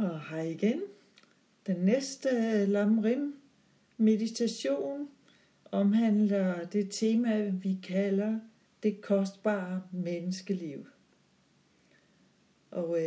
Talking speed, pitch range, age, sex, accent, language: 80 wpm, 185-225 Hz, 60-79, female, native, Danish